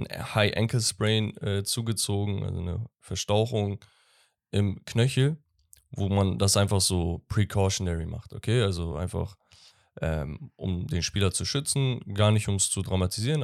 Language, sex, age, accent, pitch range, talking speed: German, male, 10-29, German, 95-125 Hz, 140 wpm